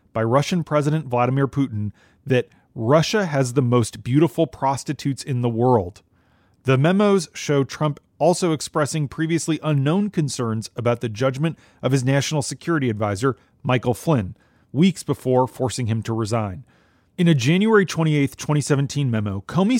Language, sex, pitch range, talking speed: English, male, 120-160 Hz, 140 wpm